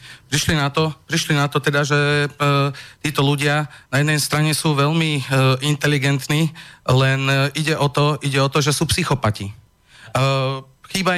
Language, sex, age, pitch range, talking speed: Slovak, male, 40-59, 135-170 Hz, 165 wpm